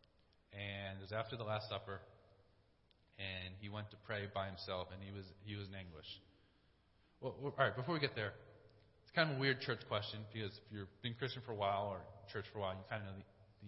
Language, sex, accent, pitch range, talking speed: English, male, American, 100-120 Hz, 230 wpm